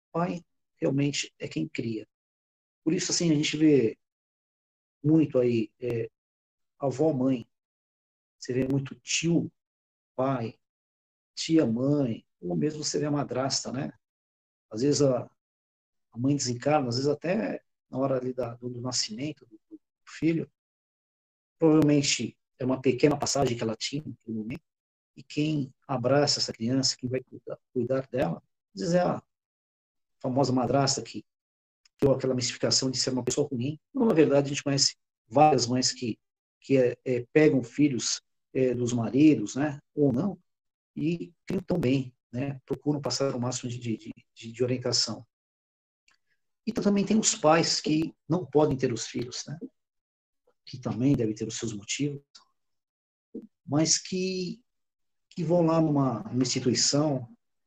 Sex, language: male, Portuguese